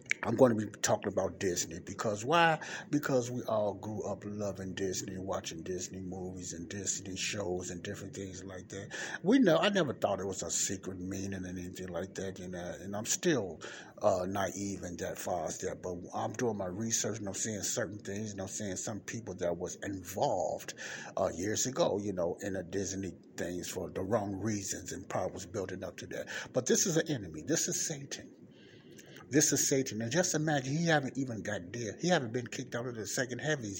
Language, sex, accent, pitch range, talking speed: English, male, American, 95-130 Hz, 215 wpm